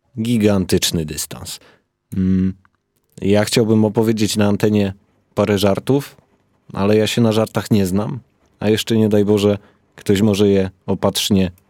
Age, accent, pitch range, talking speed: 30-49, native, 90-115 Hz, 130 wpm